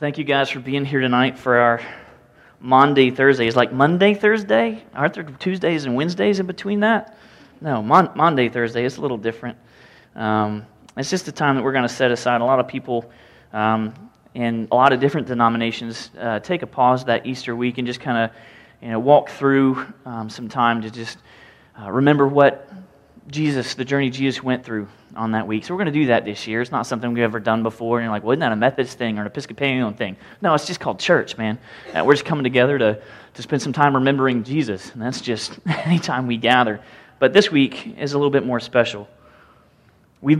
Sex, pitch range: male, 115-140 Hz